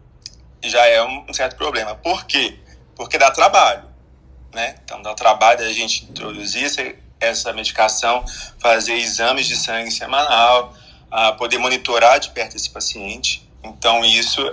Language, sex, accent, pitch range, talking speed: Portuguese, male, Brazilian, 110-130 Hz, 135 wpm